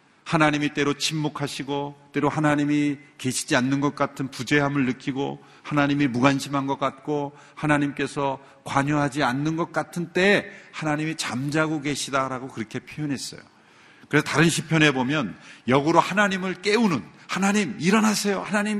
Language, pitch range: Korean, 140-185 Hz